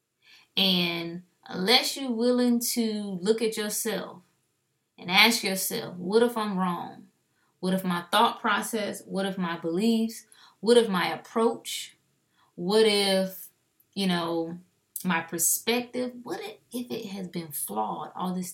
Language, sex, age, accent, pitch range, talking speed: English, female, 20-39, American, 170-220 Hz, 135 wpm